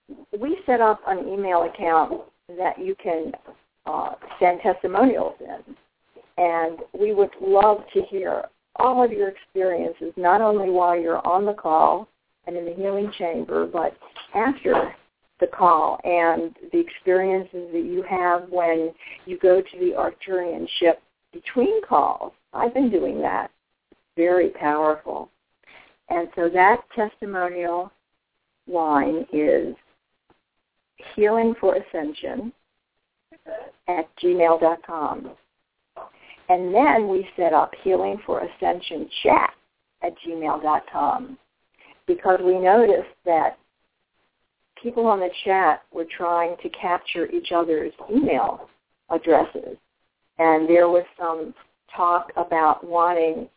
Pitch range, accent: 170-220 Hz, American